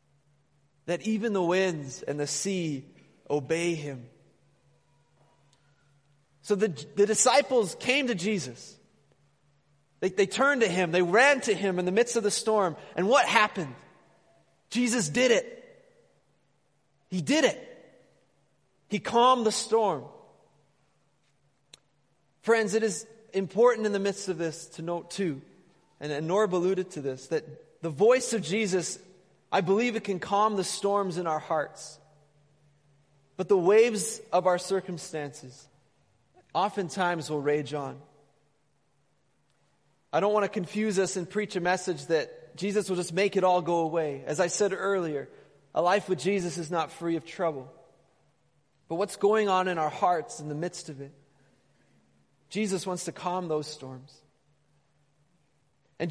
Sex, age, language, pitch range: male, 30-49, English, 150-205 Hz